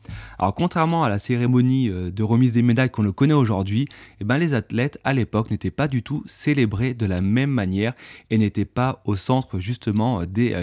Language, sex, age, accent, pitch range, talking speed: French, male, 30-49, French, 105-130 Hz, 185 wpm